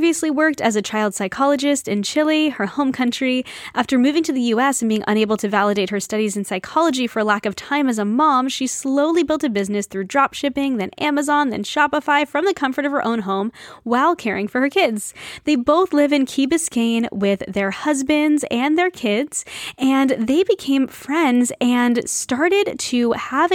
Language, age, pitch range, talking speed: English, 10-29, 225-285 Hz, 195 wpm